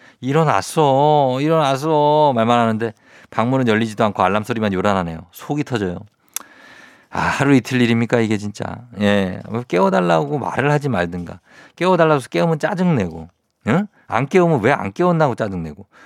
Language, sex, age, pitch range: Korean, male, 50-69, 105-155 Hz